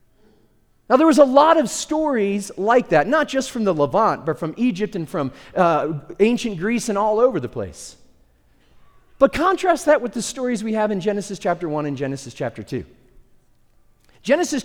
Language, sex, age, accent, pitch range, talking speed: English, male, 40-59, American, 155-230 Hz, 180 wpm